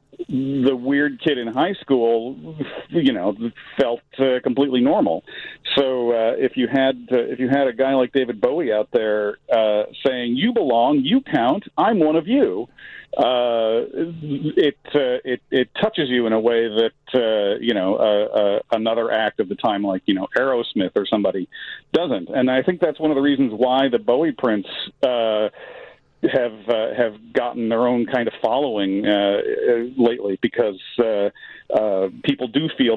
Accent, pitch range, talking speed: American, 115-160 Hz, 175 wpm